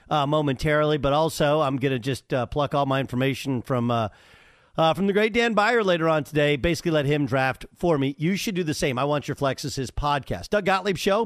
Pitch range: 130-170 Hz